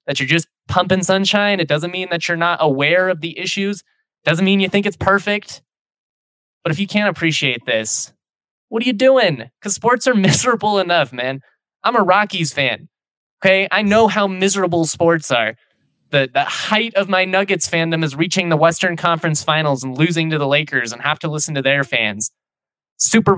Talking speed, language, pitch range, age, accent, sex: 195 wpm, English, 140-185 Hz, 20-39, American, male